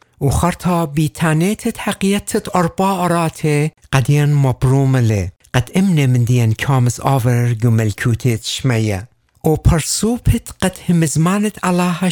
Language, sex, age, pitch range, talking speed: English, male, 60-79, 125-165 Hz, 110 wpm